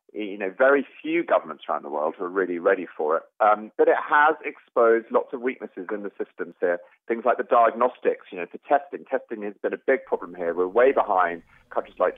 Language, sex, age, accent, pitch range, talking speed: English, male, 30-49, British, 105-145 Hz, 220 wpm